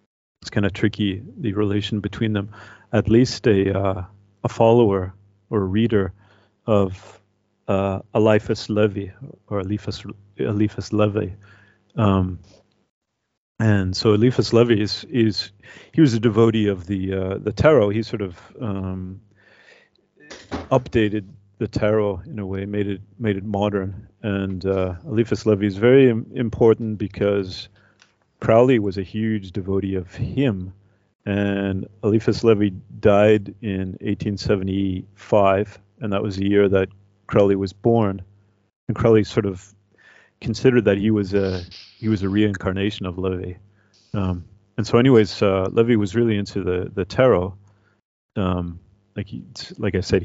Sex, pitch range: male, 95-110 Hz